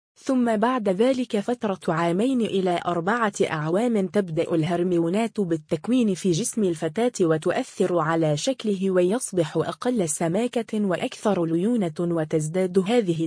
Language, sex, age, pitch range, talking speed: Arabic, female, 20-39, 170-220 Hz, 110 wpm